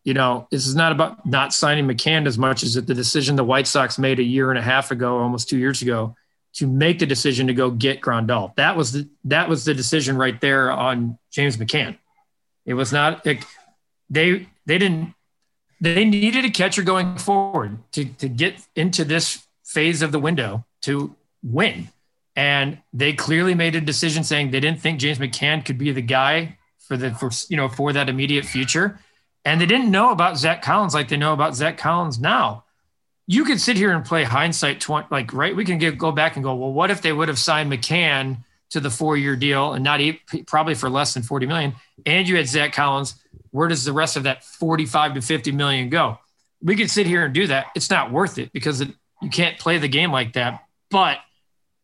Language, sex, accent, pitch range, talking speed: English, male, American, 135-165 Hz, 215 wpm